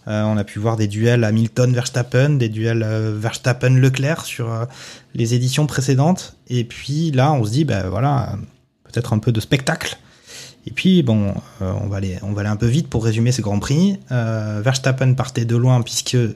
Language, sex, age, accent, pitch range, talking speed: French, male, 20-39, French, 110-130 Hz, 210 wpm